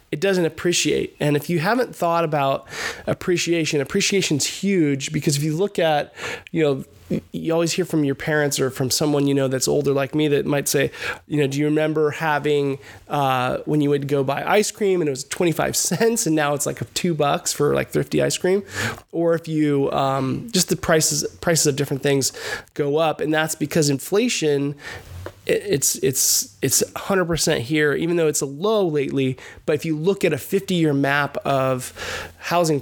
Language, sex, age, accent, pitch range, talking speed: English, male, 20-39, American, 140-165 Hz, 195 wpm